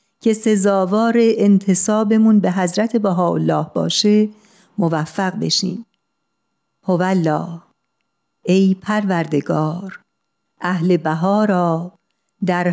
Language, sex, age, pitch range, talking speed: Persian, female, 50-69, 170-205 Hz, 75 wpm